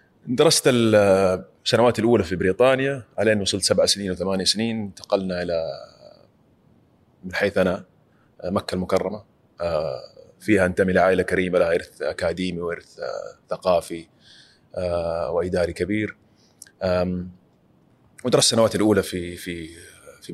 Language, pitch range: Arabic, 95-125 Hz